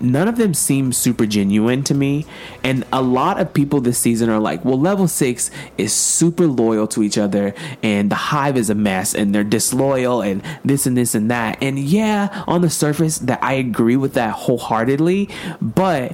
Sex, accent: male, American